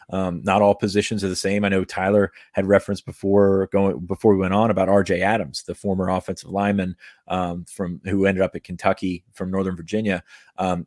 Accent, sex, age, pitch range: American, male, 30-49, 95-105 Hz